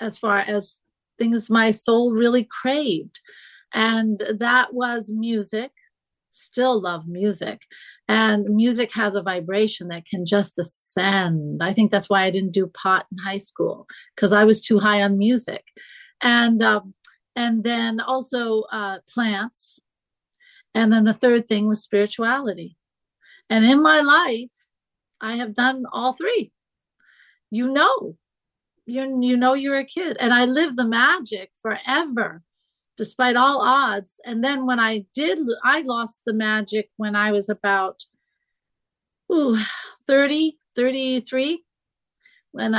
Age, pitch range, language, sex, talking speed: 40-59, 205-245 Hz, English, female, 140 wpm